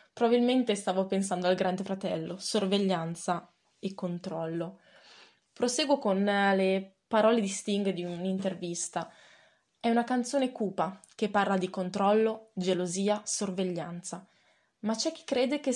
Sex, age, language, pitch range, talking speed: female, 20-39, Italian, 185-245 Hz, 120 wpm